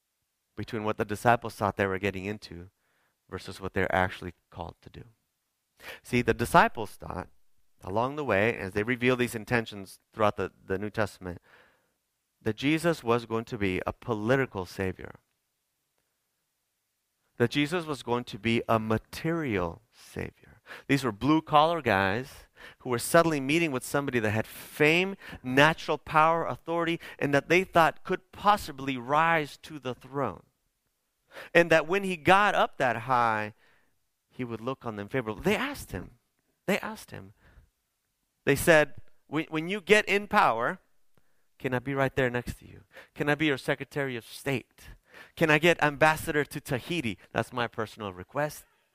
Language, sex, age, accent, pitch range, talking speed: English, male, 30-49, American, 105-155 Hz, 160 wpm